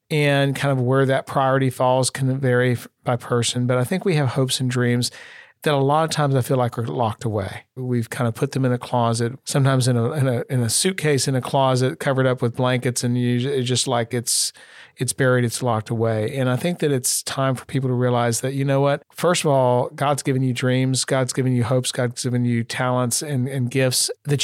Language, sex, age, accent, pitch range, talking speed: English, male, 40-59, American, 125-145 Hz, 240 wpm